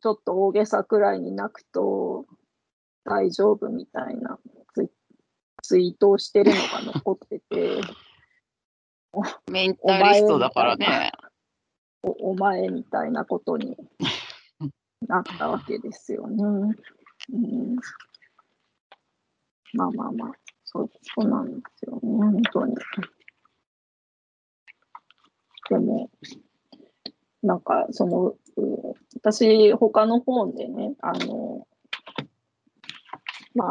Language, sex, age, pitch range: Japanese, female, 30-49, 210-255 Hz